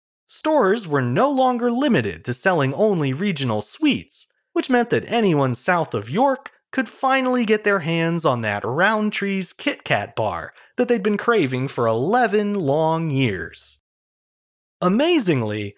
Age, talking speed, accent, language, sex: 30-49, 140 wpm, American, English, male